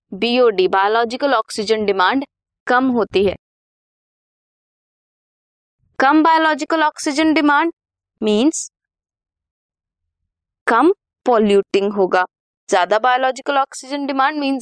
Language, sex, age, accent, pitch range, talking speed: Hindi, female, 20-39, native, 200-285 Hz, 80 wpm